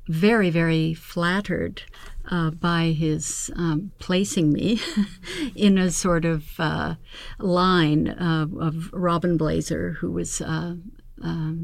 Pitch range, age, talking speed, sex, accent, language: 165-190 Hz, 60-79, 125 wpm, female, American, English